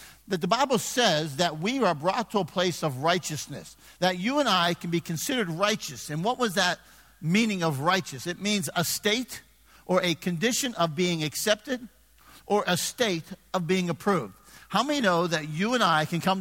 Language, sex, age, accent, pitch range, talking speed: English, male, 50-69, American, 160-205 Hz, 195 wpm